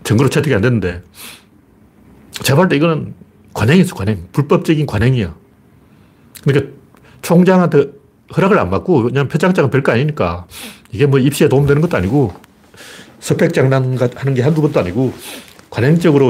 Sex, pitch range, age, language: male, 120-165 Hz, 40-59, Korean